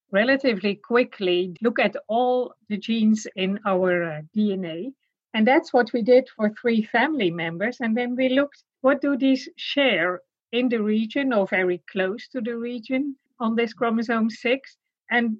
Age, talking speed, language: 50-69, 165 wpm, English